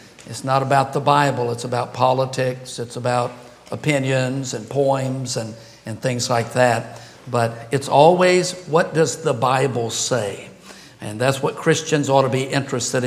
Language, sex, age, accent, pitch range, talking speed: English, male, 60-79, American, 130-160 Hz, 155 wpm